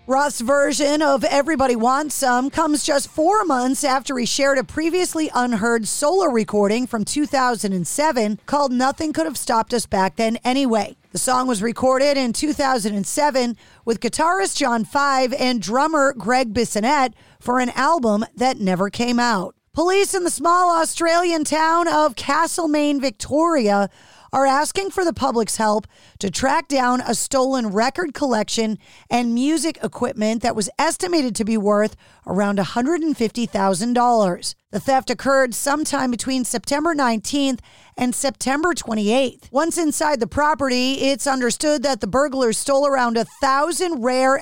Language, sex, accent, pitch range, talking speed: English, female, American, 230-290 Hz, 145 wpm